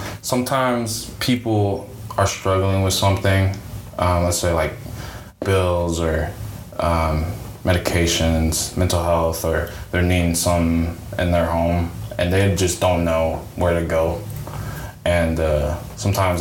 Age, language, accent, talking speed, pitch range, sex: 20-39, English, American, 125 wpm, 85-100 Hz, male